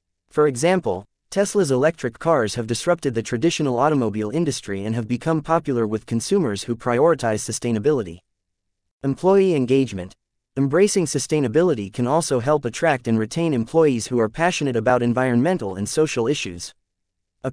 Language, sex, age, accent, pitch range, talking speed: English, male, 30-49, American, 110-155 Hz, 135 wpm